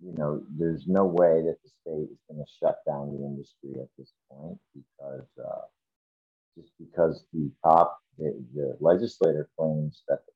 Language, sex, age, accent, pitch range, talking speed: English, male, 50-69, American, 70-110 Hz, 175 wpm